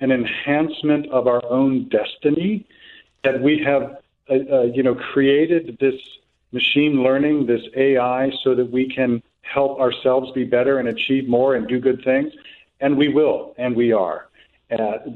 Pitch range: 120-145 Hz